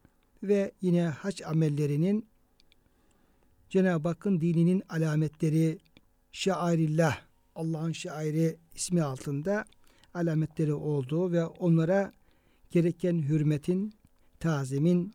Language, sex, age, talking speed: Turkish, male, 60-79, 80 wpm